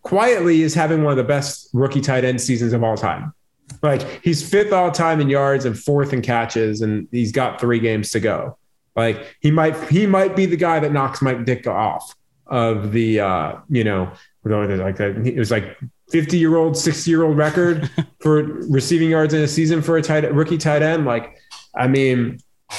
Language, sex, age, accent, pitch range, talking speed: English, male, 30-49, American, 115-155 Hz, 200 wpm